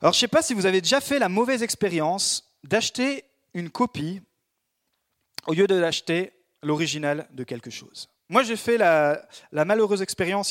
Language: French